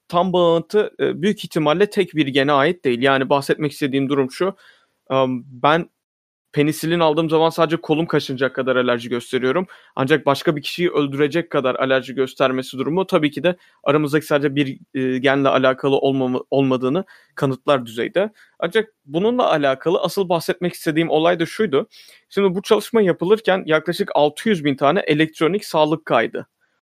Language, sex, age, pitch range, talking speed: Turkish, male, 30-49, 135-185 Hz, 145 wpm